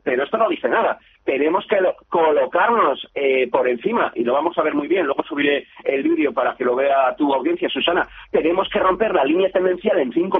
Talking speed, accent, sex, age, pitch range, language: 215 wpm, Spanish, male, 40-59, 170-245 Hz, Spanish